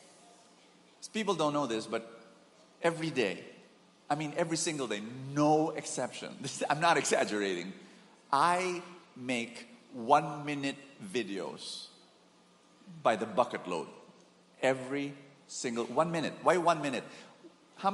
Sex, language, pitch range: male, English, 125-165 Hz